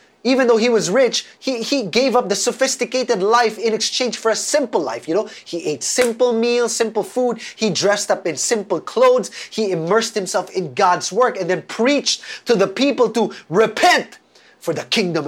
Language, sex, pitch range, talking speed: English, male, 180-245 Hz, 195 wpm